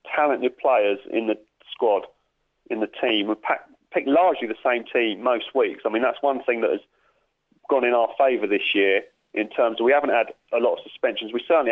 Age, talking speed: 40-59, 210 wpm